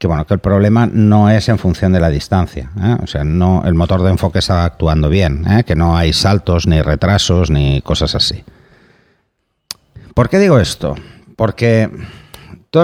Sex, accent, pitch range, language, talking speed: male, Spanish, 85-110 Hz, Spanish, 180 wpm